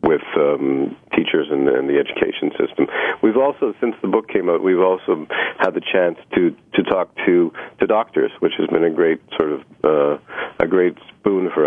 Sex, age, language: male, 50-69, English